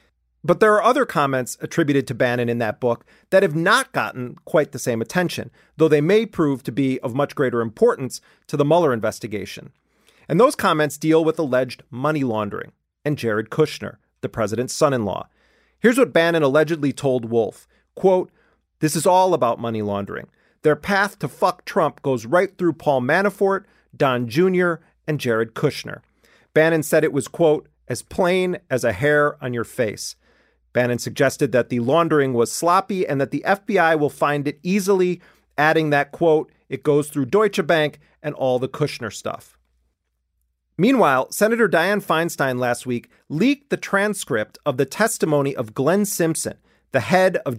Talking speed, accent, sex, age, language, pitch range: 170 wpm, American, male, 40-59, English, 125-180 Hz